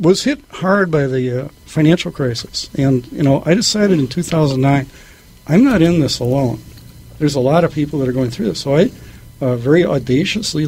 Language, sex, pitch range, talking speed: English, male, 130-165 Hz, 195 wpm